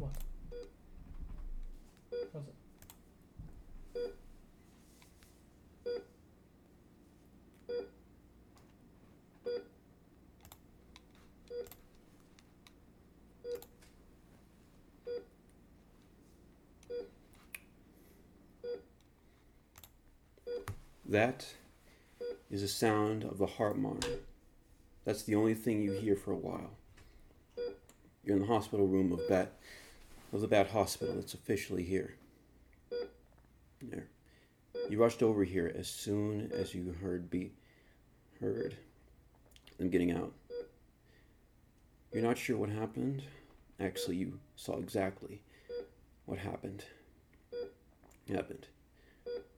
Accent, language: American, English